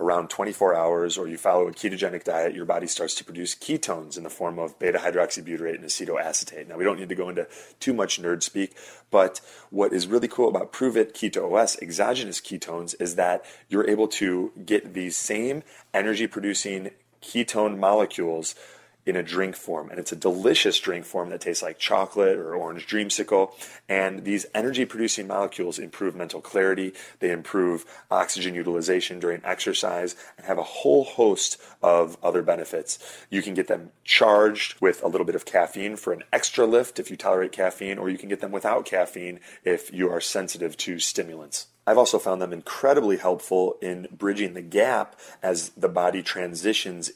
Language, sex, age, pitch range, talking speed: English, male, 30-49, 90-110 Hz, 175 wpm